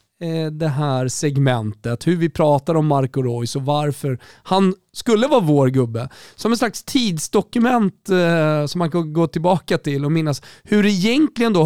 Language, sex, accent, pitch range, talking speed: Swedish, male, native, 125-190 Hz, 170 wpm